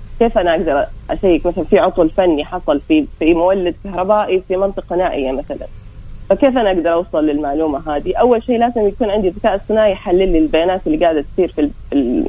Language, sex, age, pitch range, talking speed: Arabic, female, 30-49, 170-220 Hz, 180 wpm